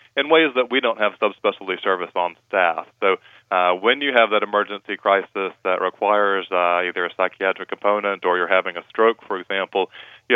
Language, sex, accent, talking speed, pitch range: English, male, American, 190 wpm, 90-100 Hz